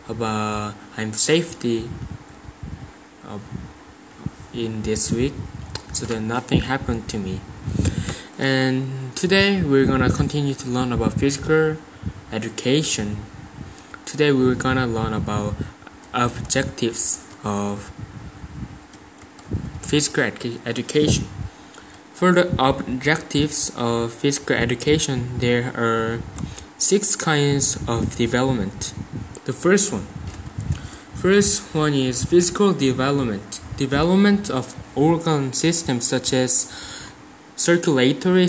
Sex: male